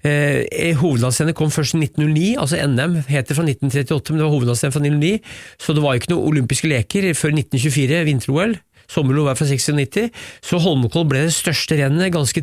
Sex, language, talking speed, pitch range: male, English, 175 wpm, 140-165 Hz